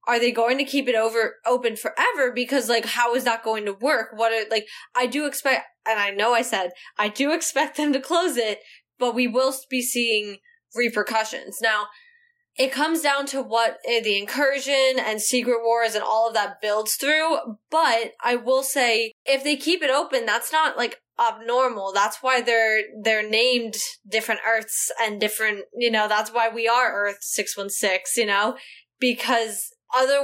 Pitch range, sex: 220-275 Hz, female